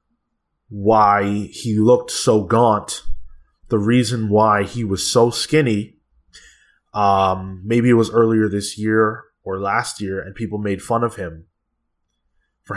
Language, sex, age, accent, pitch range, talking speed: English, male, 20-39, American, 90-115 Hz, 135 wpm